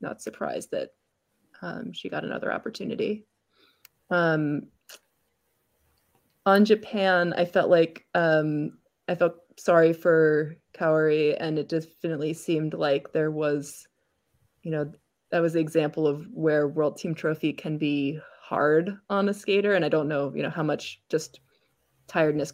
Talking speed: 145 wpm